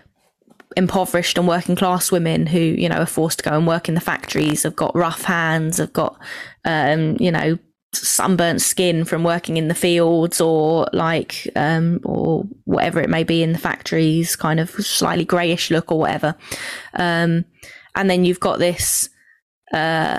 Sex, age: female, 20-39